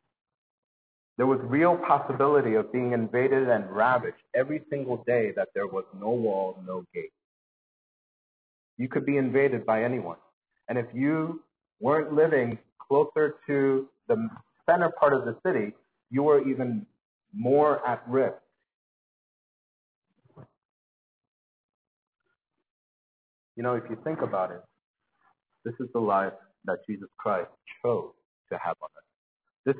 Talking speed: 130 wpm